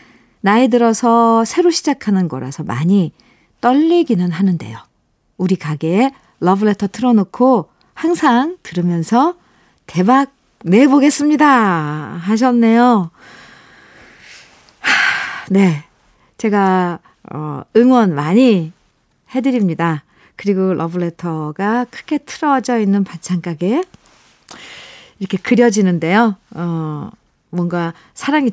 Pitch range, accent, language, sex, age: 175-250 Hz, native, Korean, female, 50-69